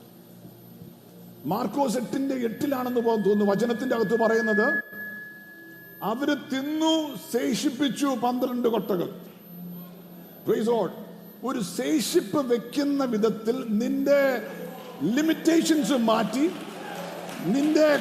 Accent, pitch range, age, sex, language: Indian, 255-310 Hz, 50-69, male, English